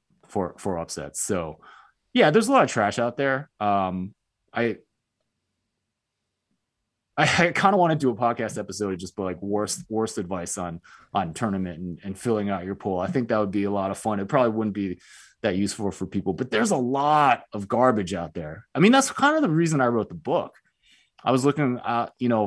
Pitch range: 90-130 Hz